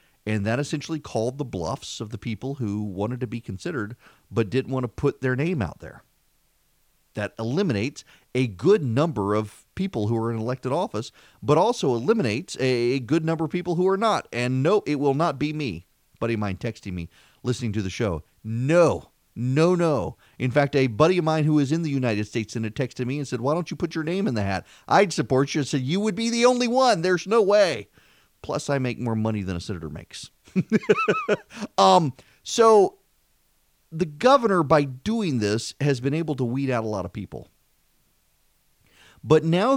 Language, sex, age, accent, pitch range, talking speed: English, male, 40-59, American, 110-155 Hz, 200 wpm